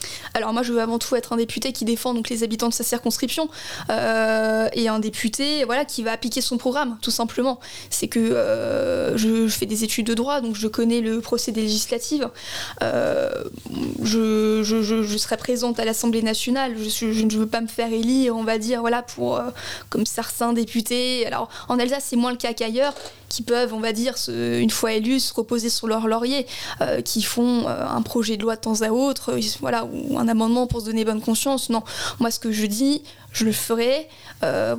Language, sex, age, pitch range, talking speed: French, female, 20-39, 225-245 Hz, 215 wpm